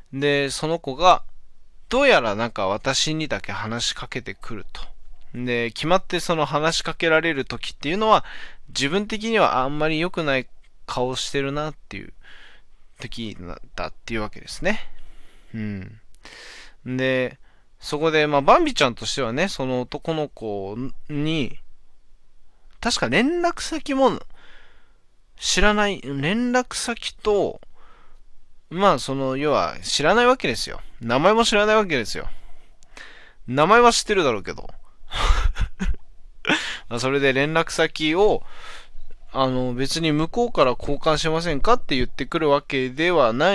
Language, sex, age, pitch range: Japanese, male, 20-39, 120-175 Hz